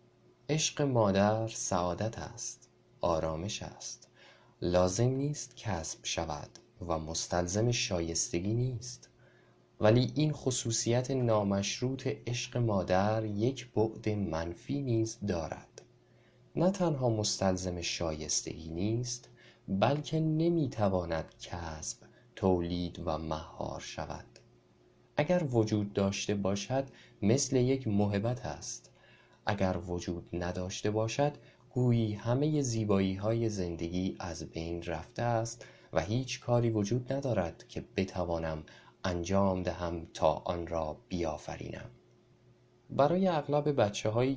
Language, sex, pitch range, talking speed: Persian, male, 90-125 Hz, 100 wpm